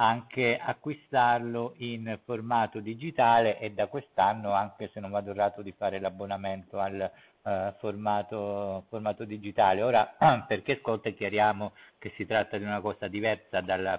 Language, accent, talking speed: Italian, native, 140 wpm